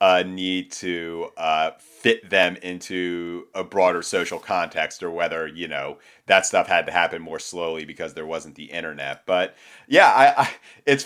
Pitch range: 90-115 Hz